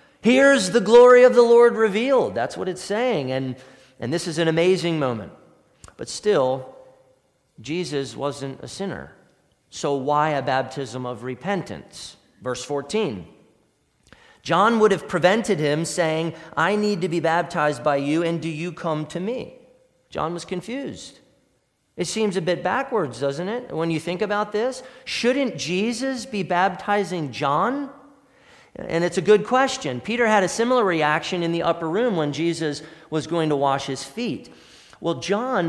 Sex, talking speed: male, 160 wpm